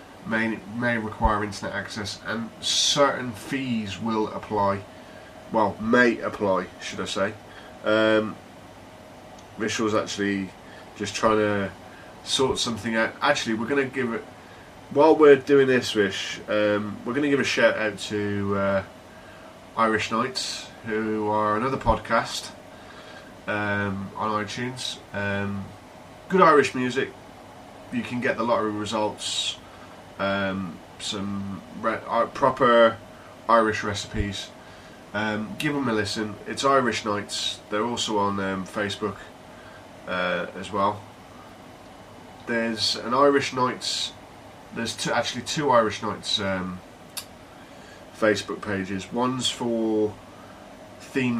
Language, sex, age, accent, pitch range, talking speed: English, male, 20-39, British, 100-115 Hz, 120 wpm